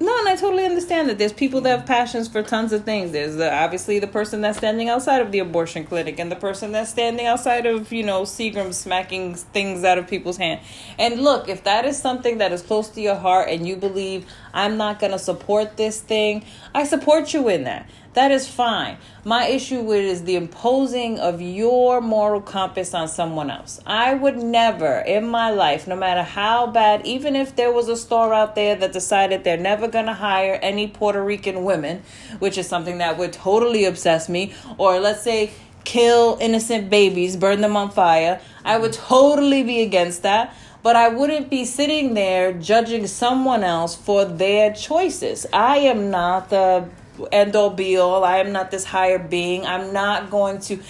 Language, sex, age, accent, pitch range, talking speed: English, female, 30-49, American, 185-235 Hz, 200 wpm